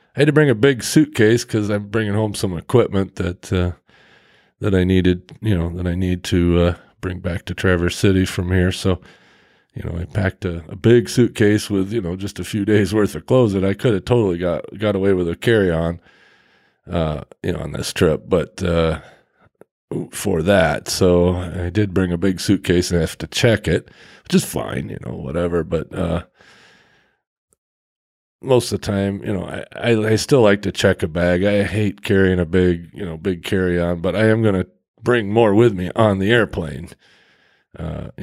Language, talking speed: English, 205 wpm